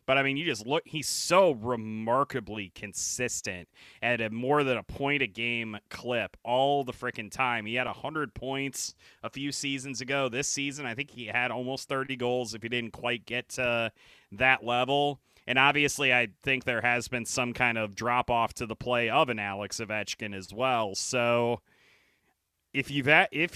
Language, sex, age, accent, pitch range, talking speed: English, male, 30-49, American, 110-130 Hz, 175 wpm